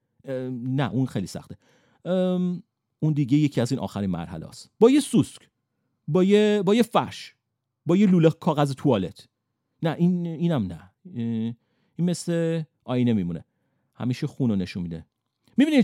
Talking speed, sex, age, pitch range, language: 150 wpm, male, 40-59, 120-170 Hz, Persian